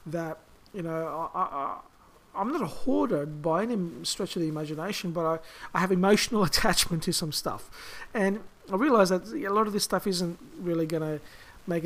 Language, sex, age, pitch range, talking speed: English, male, 50-69, 160-205 Hz, 190 wpm